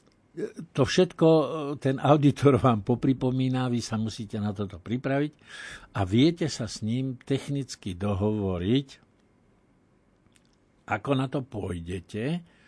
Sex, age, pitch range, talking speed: male, 60-79, 105-135 Hz, 110 wpm